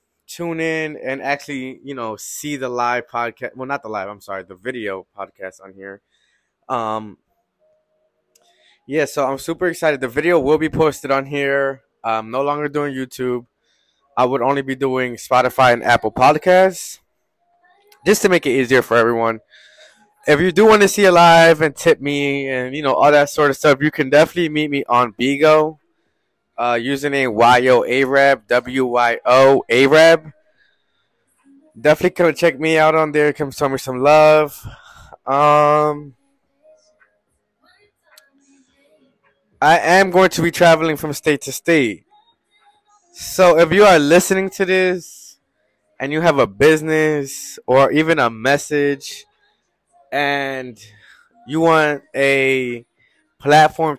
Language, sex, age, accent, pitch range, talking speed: English, male, 20-39, American, 130-170 Hz, 150 wpm